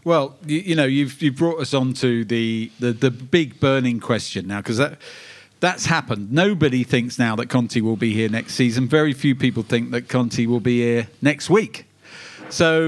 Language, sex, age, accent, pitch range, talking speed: English, male, 40-59, British, 125-160 Hz, 200 wpm